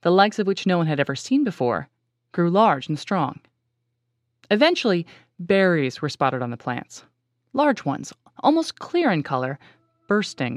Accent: American